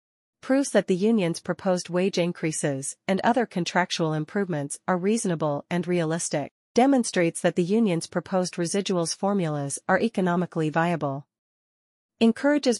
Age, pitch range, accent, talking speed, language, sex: 40-59, 165-200 Hz, American, 120 wpm, English, female